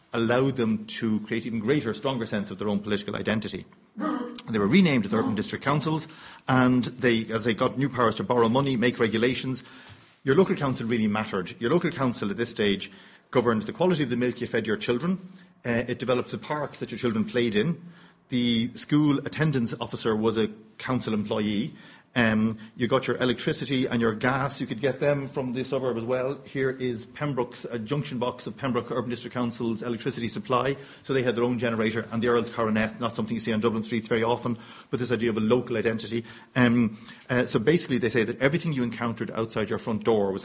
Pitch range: 110-130 Hz